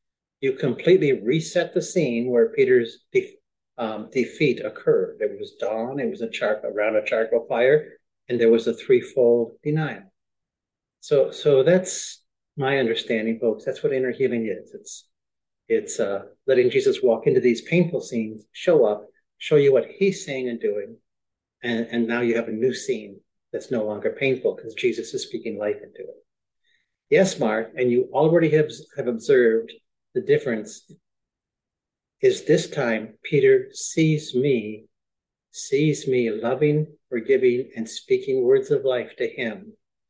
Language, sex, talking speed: English, male, 155 wpm